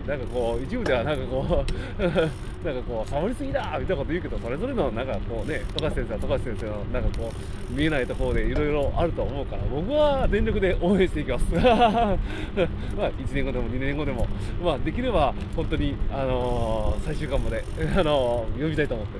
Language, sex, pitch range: Japanese, male, 100-130 Hz